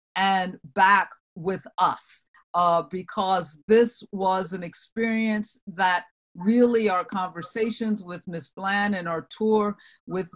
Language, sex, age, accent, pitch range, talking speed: English, female, 50-69, American, 170-210 Hz, 120 wpm